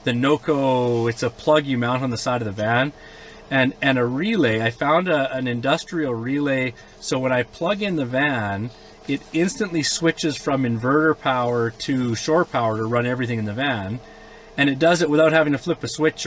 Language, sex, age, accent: English, male, 30-49, American